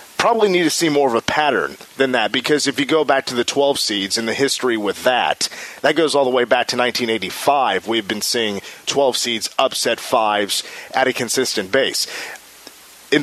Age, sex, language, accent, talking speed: 30-49, male, English, American, 200 wpm